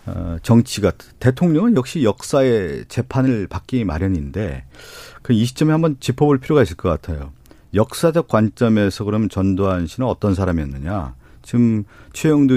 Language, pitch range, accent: Korean, 95-135 Hz, native